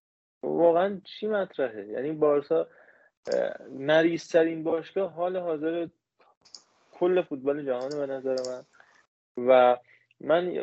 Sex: male